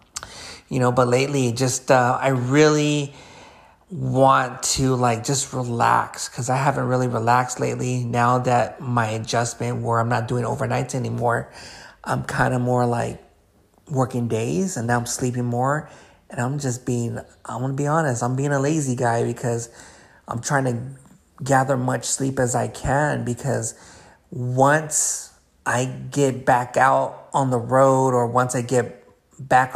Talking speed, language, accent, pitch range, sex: 175 wpm, English, American, 115-130 Hz, male